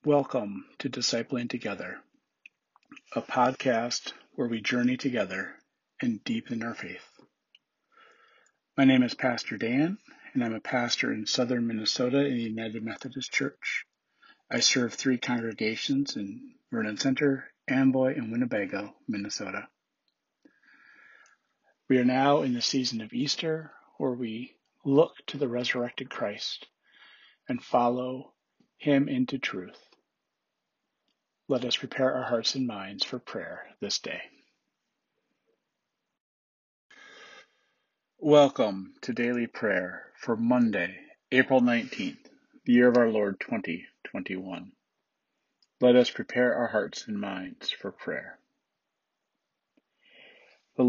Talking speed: 115 wpm